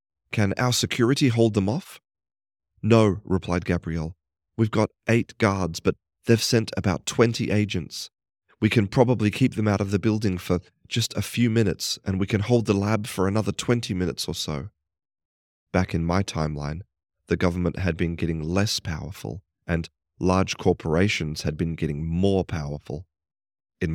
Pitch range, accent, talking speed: 85-110 Hz, Australian, 165 wpm